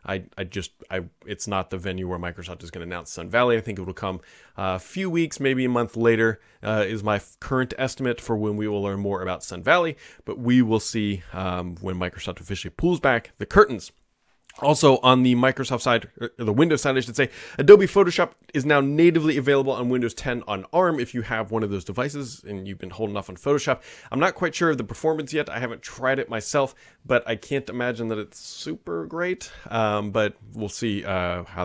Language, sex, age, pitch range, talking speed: English, male, 30-49, 100-135 Hz, 225 wpm